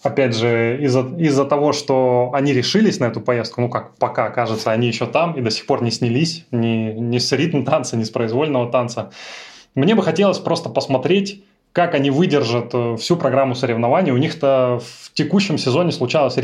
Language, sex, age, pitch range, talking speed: Russian, male, 20-39, 115-145 Hz, 175 wpm